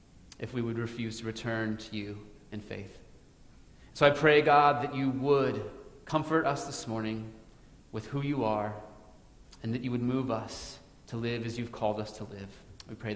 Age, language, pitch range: 30-49, English, 115-145 Hz